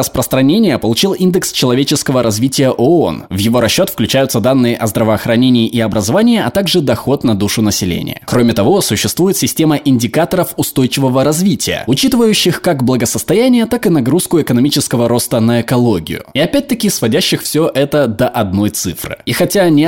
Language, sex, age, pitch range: Russian, male, 20-39, 115-160 Hz